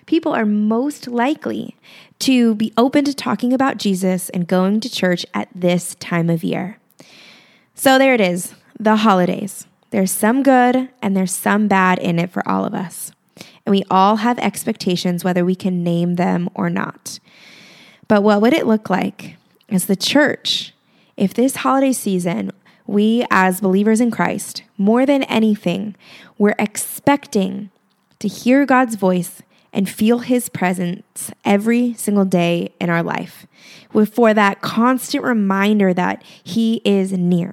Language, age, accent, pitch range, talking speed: English, 20-39, American, 185-230 Hz, 155 wpm